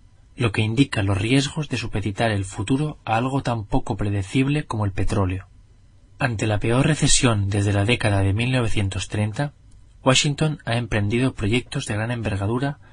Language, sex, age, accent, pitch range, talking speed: Spanish, male, 20-39, Spanish, 105-125 Hz, 155 wpm